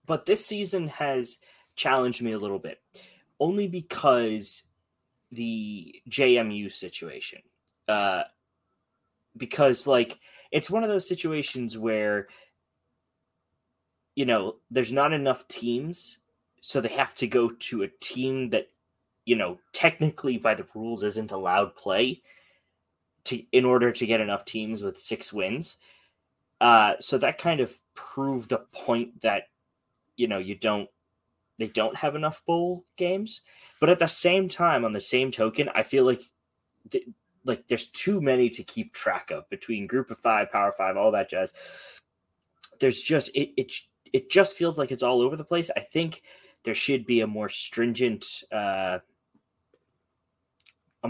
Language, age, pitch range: English, 20-39, 110-155 Hz